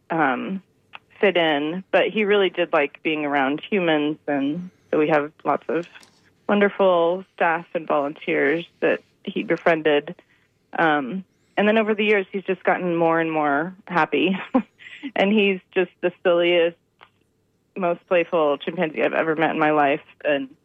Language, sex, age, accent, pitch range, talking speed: English, female, 30-49, American, 155-185 Hz, 150 wpm